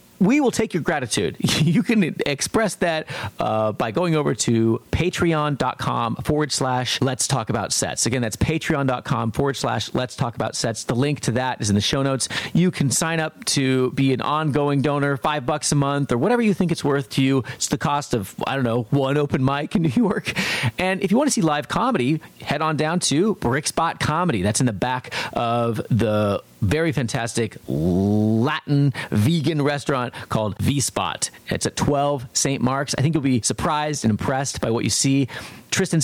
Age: 40-59